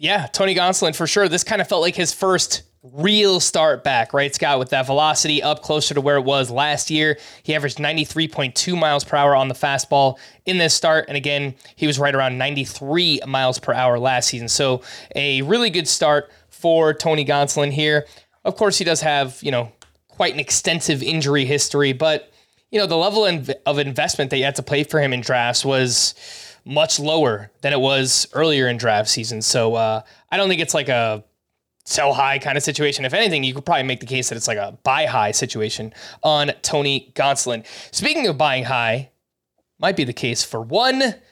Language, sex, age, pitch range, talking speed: English, male, 20-39, 130-165 Hz, 210 wpm